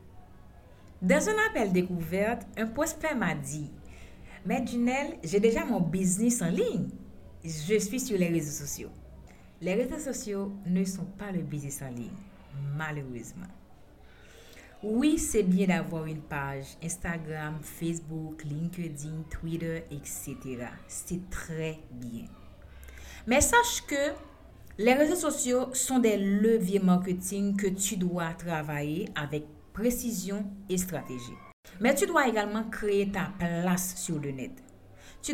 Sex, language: female, French